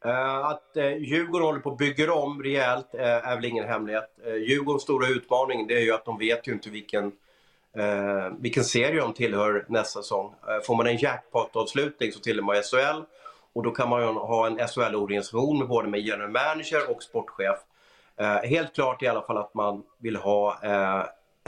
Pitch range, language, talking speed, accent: 110-140 Hz, English, 200 wpm, Swedish